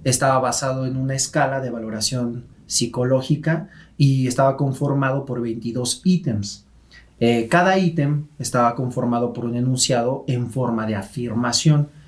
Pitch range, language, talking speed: 115-150 Hz, Spanish, 130 wpm